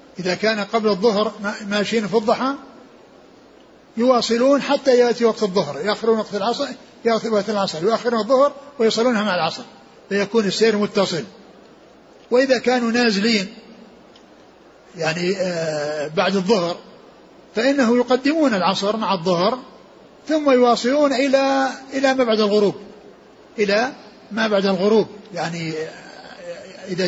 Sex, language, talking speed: male, Arabic, 110 wpm